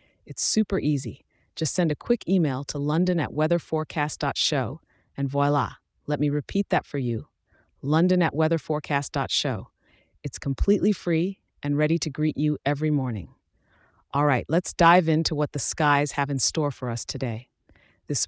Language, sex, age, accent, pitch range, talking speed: English, female, 30-49, American, 135-165 Hz, 160 wpm